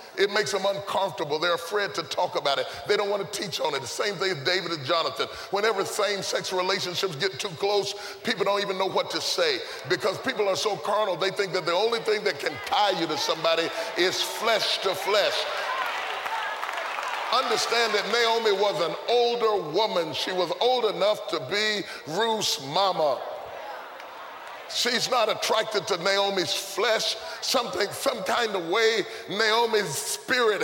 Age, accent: 30-49, American